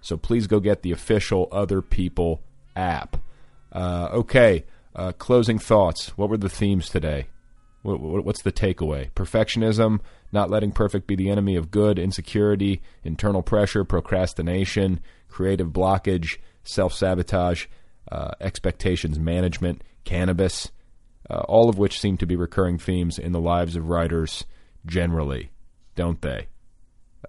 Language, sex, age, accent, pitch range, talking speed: English, male, 30-49, American, 85-100 Hz, 130 wpm